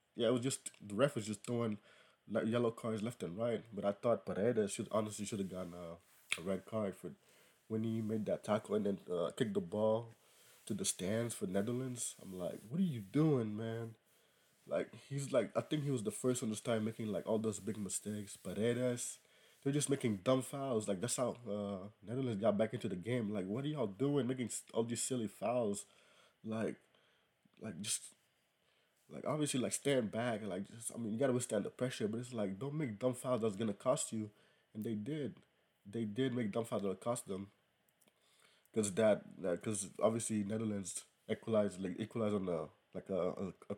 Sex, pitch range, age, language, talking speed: male, 105-125 Hz, 20-39, English, 210 wpm